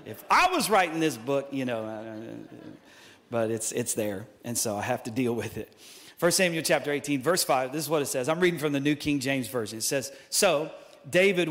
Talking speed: 225 wpm